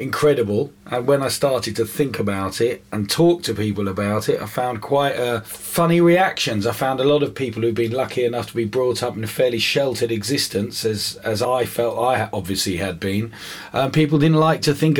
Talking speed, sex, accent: 215 wpm, male, British